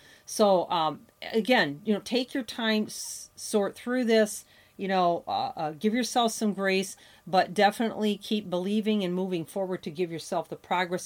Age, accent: 40-59, American